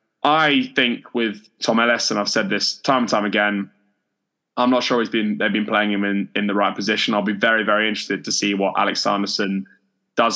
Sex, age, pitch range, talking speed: male, 10-29, 100-115 Hz, 220 wpm